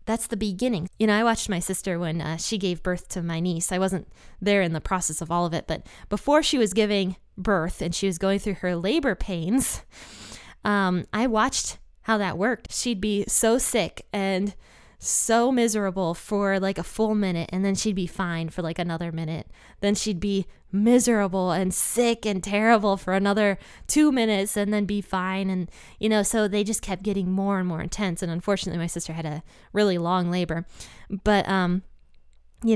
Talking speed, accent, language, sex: 200 wpm, American, English, female